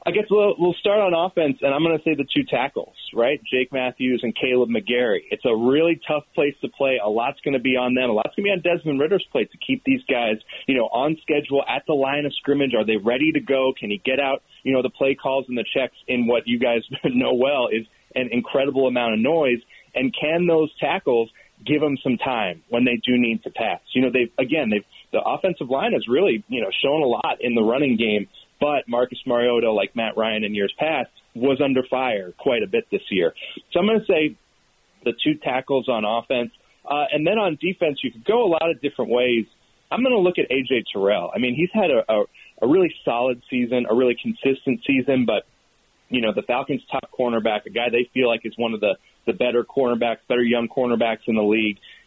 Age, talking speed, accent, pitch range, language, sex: 30-49, 235 wpm, American, 120-155 Hz, English, male